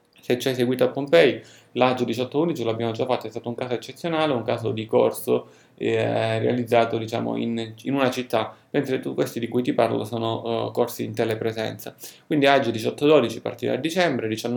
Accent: native